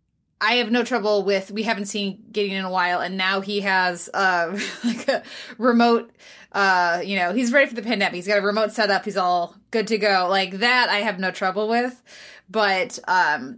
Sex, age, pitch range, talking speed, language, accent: female, 20-39, 190-235 Hz, 210 wpm, English, American